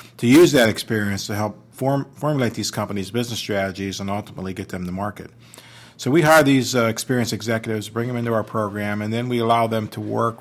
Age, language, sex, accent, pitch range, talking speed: 50-69, English, male, American, 100-120 Hz, 215 wpm